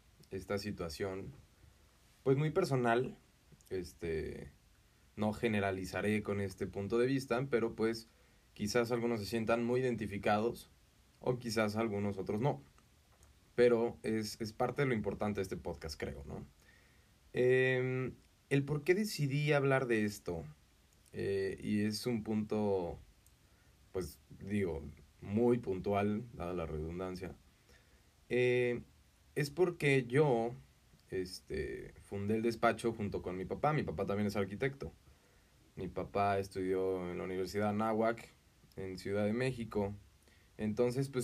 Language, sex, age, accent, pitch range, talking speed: Spanish, male, 20-39, Mexican, 95-120 Hz, 130 wpm